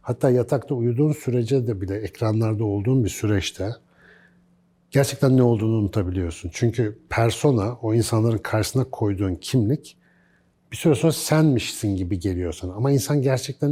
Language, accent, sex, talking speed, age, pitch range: Turkish, native, male, 130 wpm, 60-79, 110-140 Hz